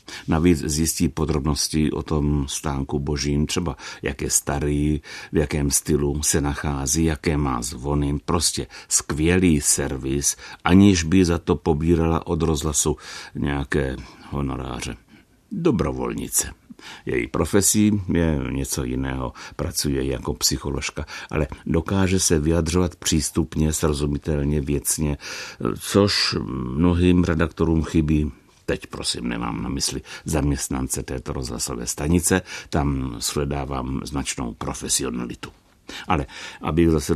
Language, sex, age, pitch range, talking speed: Czech, male, 60-79, 70-80 Hz, 110 wpm